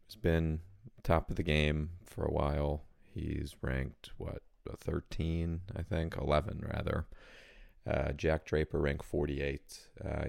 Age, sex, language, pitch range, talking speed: 30-49, male, English, 70-85 Hz, 135 wpm